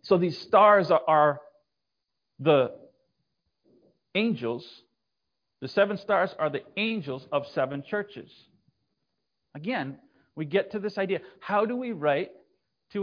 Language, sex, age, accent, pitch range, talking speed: English, male, 40-59, American, 155-225 Hz, 120 wpm